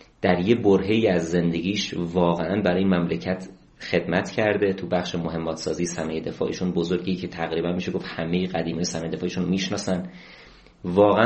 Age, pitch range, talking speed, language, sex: 30-49, 90-115 Hz, 150 wpm, Persian, male